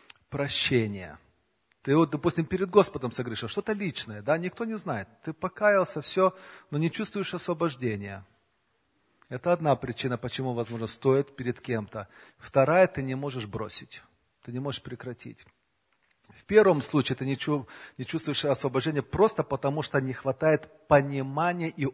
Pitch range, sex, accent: 125-155 Hz, male, native